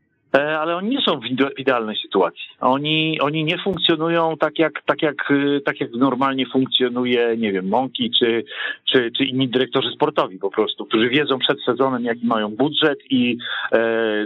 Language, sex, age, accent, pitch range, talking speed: Polish, male, 40-59, native, 130-170 Hz, 165 wpm